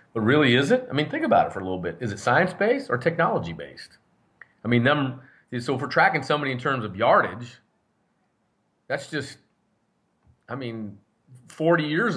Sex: male